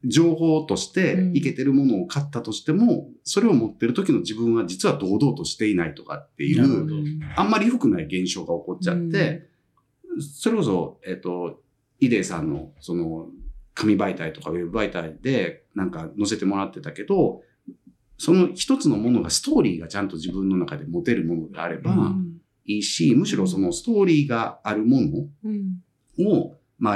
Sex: male